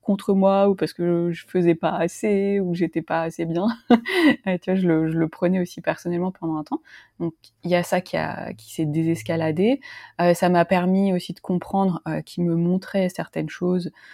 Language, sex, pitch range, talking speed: French, female, 170-200 Hz, 215 wpm